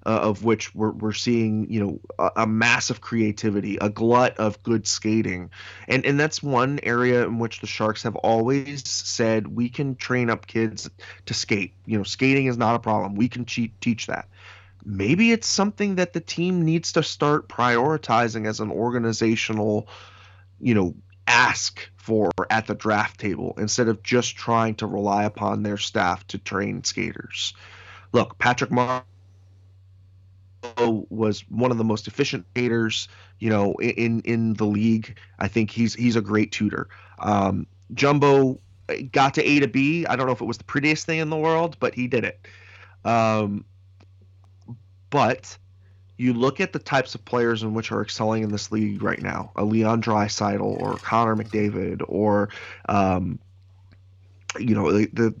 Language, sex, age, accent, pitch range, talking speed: English, male, 30-49, American, 100-120 Hz, 170 wpm